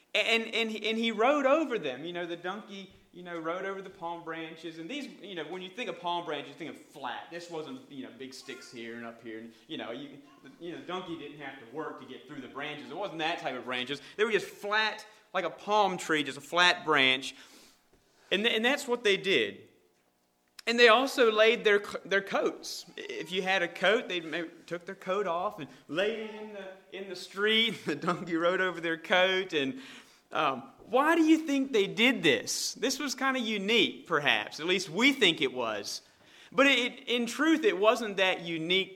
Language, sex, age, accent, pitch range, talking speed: English, male, 30-49, American, 160-220 Hz, 225 wpm